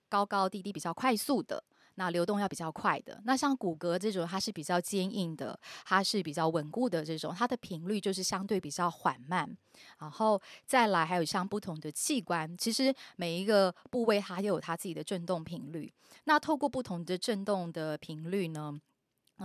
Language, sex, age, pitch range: Chinese, female, 20-39, 165-200 Hz